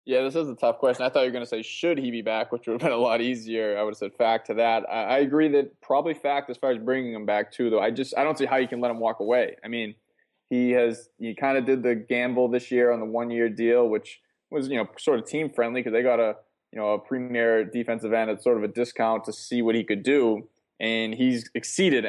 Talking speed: 290 wpm